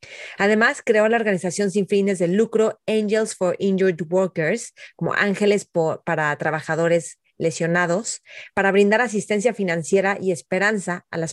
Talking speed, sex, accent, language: 140 wpm, female, Mexican, Spanish